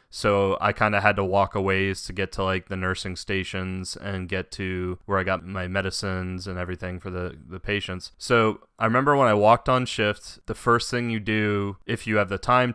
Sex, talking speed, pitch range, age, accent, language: male, 225 wpm, 95-110 Hz, 20-39, American, English